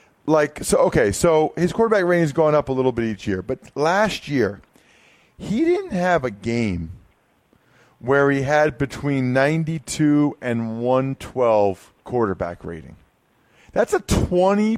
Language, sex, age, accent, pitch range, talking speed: English, male, 40-59, American, 135-180 Hz, 140 wpm